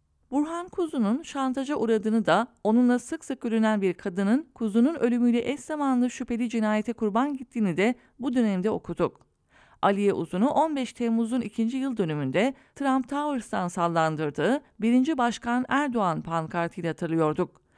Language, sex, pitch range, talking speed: English, female, 195-255 Hz, 130 wpm